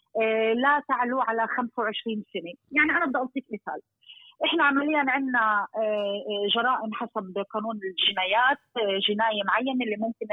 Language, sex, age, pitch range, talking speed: Arabic, female, 30-49, 215-270 Hz, 120 wpm